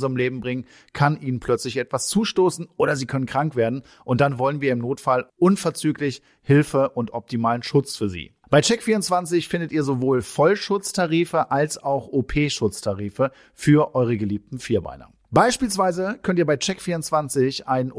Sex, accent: male, German